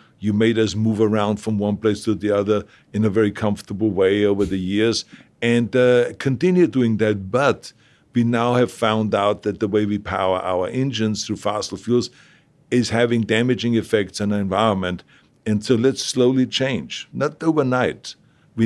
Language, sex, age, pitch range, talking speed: English, male, 60-79, 100-120 Hz, 175 wpm